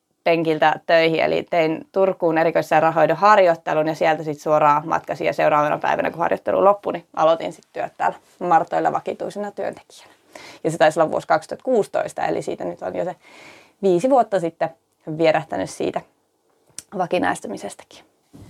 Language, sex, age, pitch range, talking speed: Finnish, female, 20-39, 165-205 Hz, 145 wpm